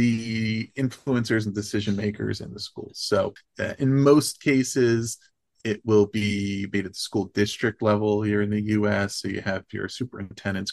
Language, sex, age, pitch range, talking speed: English, male, 30-49, 100-110 Hz, 175 wpm